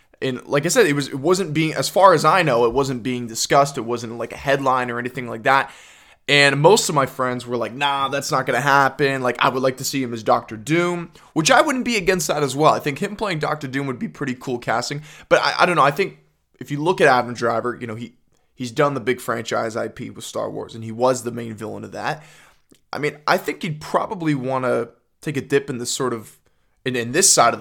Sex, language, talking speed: male, English, 265 wpm